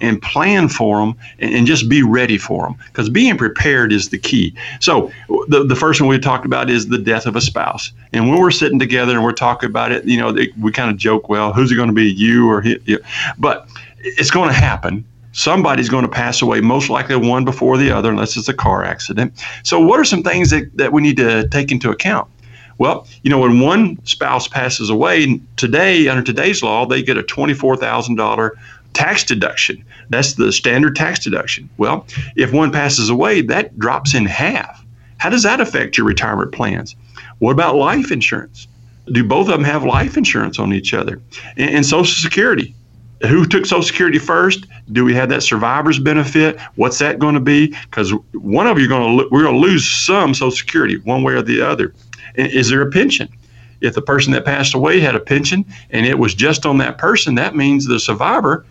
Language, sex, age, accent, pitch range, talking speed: English, male, 50-69, American, 115-145 Hz, 215 wpm